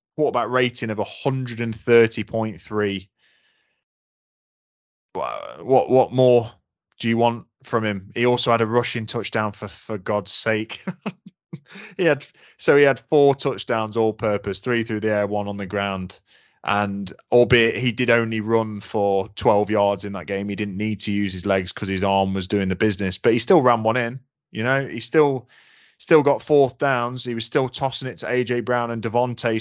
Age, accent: 20-39, British